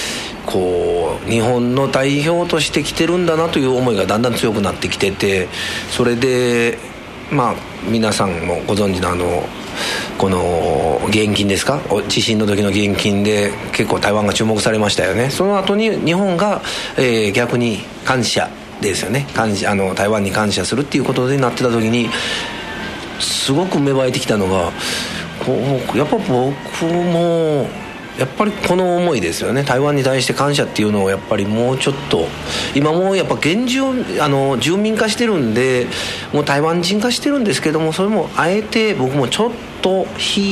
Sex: male